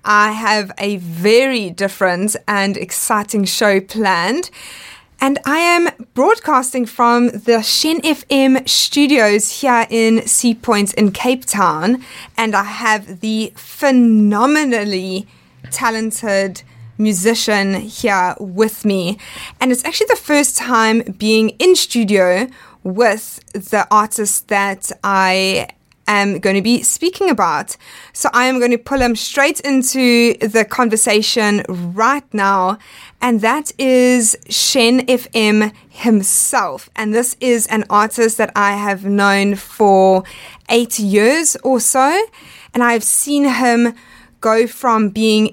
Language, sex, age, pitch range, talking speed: English, female, 20-39, 200-250 Hz, 125 wpm